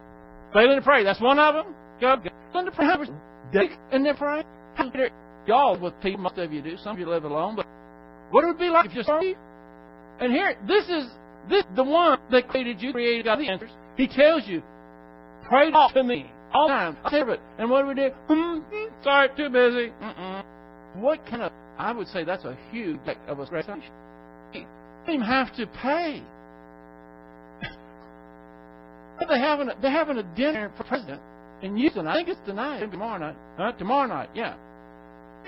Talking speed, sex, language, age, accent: 185 wpm, male, English, 60-79, American